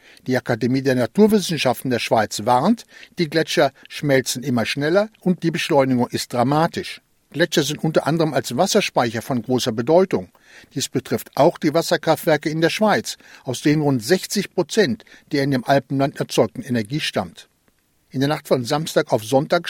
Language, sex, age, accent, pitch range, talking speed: German, male, 60-79, German, 135-180 Hz, 160 wpm